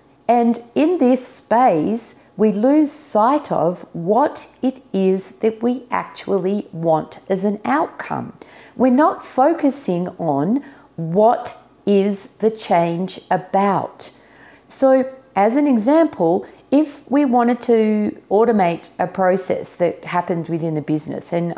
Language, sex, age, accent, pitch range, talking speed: English, female, 50-69, Australian, 170-220 Hz, 120 wpm